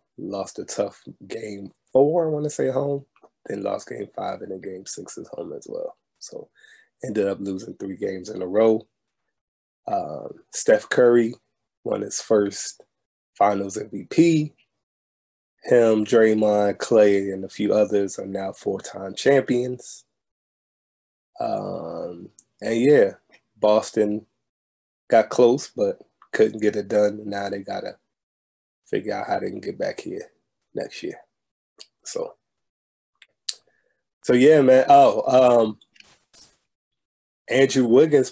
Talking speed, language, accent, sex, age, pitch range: 130 wpm, English, American, male, 20-39, 100-140 Hz